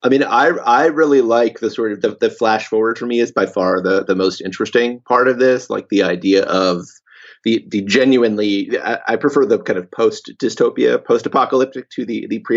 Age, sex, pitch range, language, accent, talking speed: 30-49, male, 105-135 Hz, English, American, 220 wpm